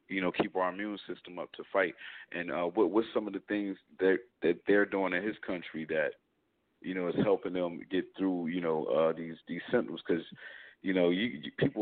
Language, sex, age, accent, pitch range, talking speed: English, male, 40-59, American, 90-105 Hz, 225 wpm